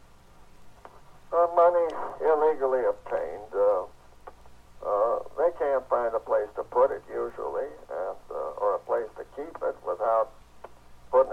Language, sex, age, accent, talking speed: English, male, 60-79, American, 130 wpm